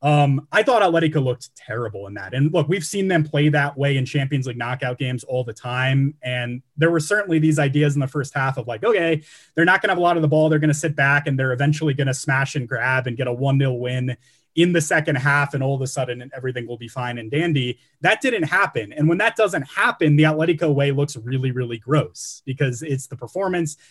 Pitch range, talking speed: 130-155 Hz, 250 wpm